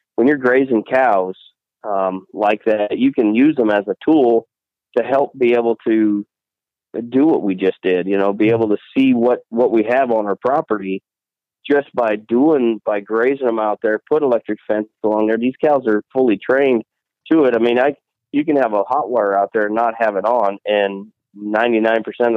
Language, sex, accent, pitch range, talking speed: English, male, American, 100-120 Hz, 200 wpm